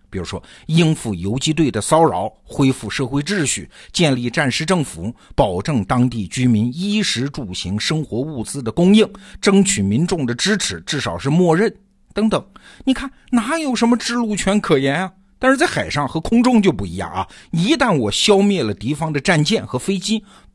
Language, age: Chinese, 50-69